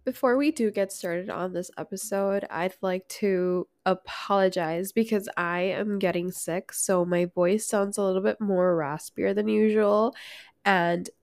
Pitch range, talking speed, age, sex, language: 175-205 Hz, 155 wpm, 10-29, female, English